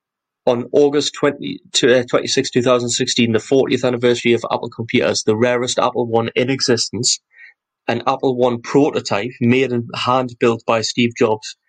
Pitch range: 115-140 Hz